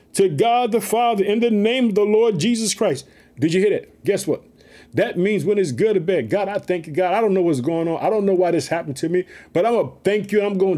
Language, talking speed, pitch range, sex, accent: English, 290 wpm, 195-255 Hz, male, American